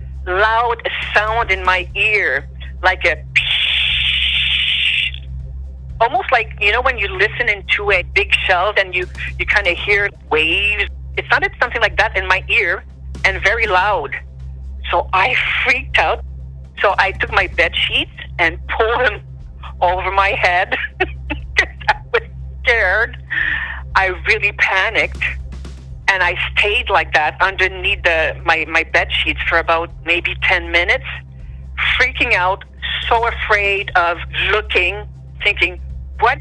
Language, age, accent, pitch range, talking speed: English, 50-69, American, 65-70 Hz, 135 wpm